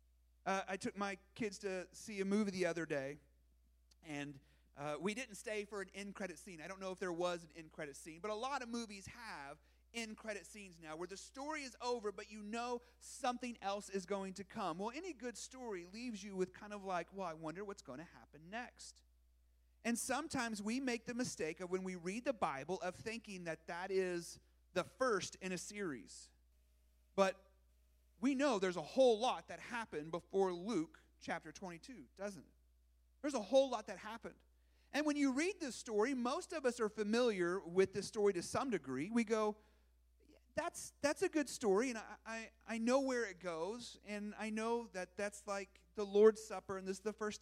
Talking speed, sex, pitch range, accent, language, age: 205 wpm, male, 160-230 Hz, American, English, 30-49